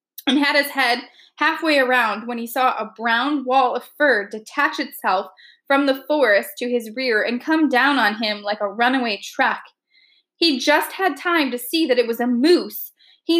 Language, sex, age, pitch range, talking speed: English, female, 20-39, 255-315 Hz, 195 wpm